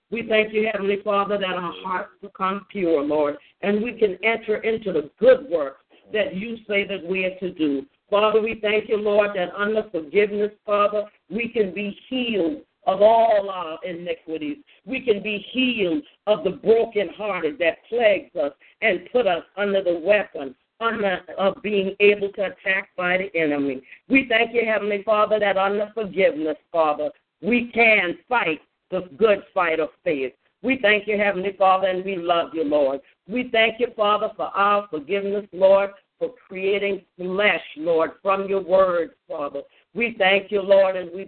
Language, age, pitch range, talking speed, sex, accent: English, 50-69, 165-210 Hz, 170 wpm, female, American